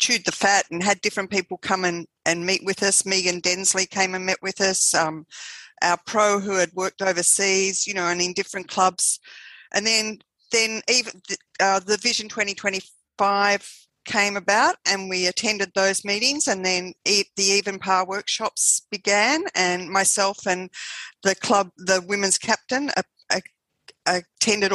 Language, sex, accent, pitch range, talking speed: English, female, Australian, 180-205 Hz, 160 wpm